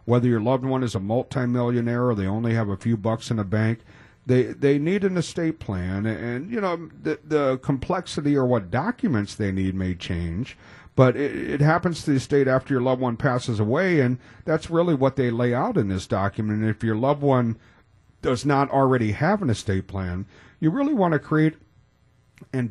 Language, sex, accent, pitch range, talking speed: English, male, American, 105-140 Hz, 205 wpm